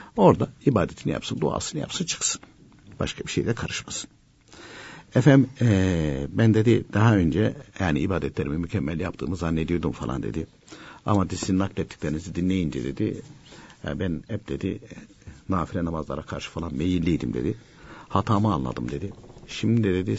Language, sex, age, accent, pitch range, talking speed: Turkish, male, 60-79, native, 80-110 Hz, 135 wpm